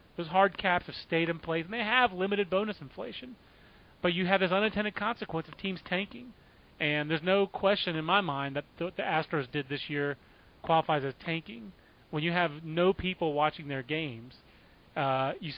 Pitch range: 155-205 Hz